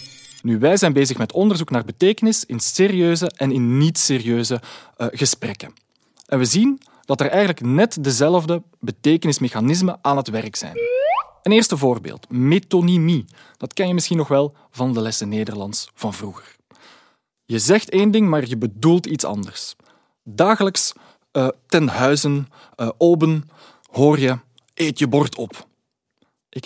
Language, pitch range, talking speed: Dutch, 120-165 Hz, 145 wpm